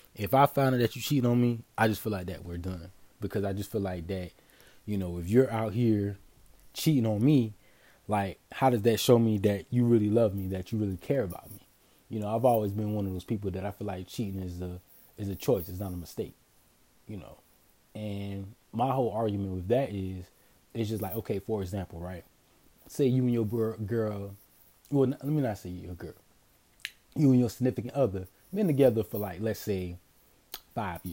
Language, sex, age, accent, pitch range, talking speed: English, male, 20-39, American, 95-125 Hz, 215 wpm